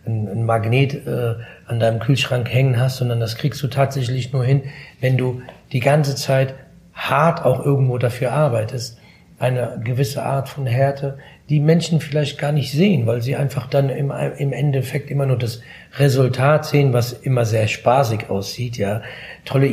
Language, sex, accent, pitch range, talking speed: German, male, German, 120-140 Hz, 165 wpm